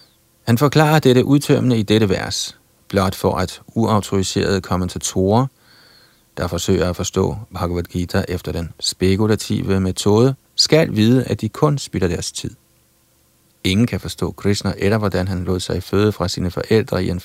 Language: Danish